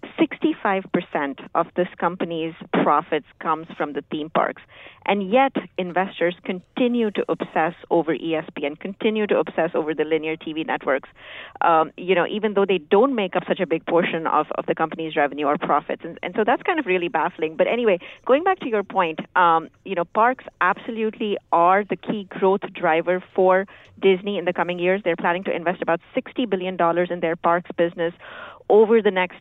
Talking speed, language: 190 wpm, English